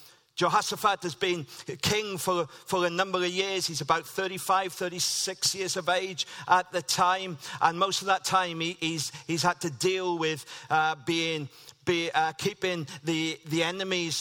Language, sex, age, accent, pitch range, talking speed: English, male, 50-69, British, 145-180 Hz, 170 wpm